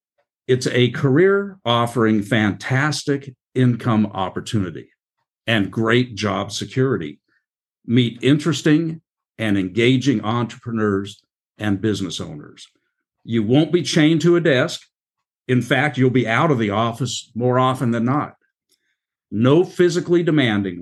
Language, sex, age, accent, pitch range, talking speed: English, male, 50-69, American, 110-145 Hz, 120 wpm